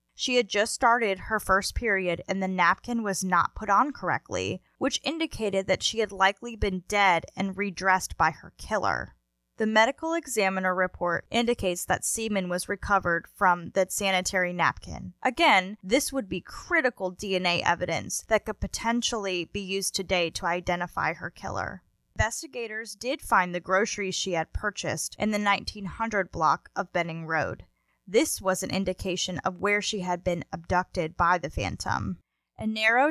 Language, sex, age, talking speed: English, female, 10-29, 160 wpm